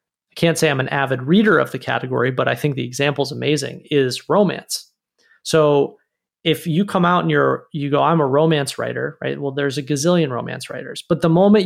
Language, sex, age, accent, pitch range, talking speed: English, male, 30-49, American, 145-185 Hz, 210 wpm